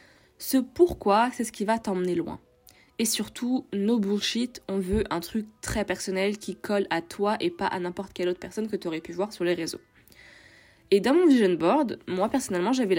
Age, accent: 20-39, French